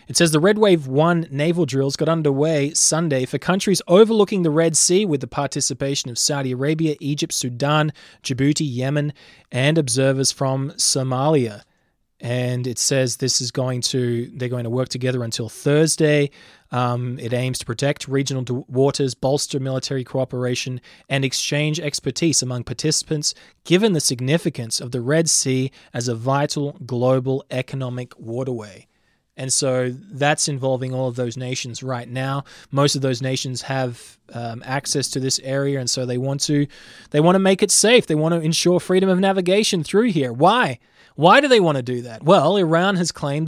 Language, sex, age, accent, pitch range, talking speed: English, male, 20-39, Australian, 130-160 Hz, 170 wpm